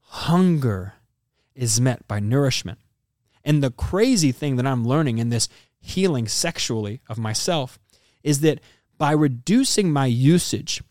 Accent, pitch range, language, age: American, 115-155 Hz, English, 20-39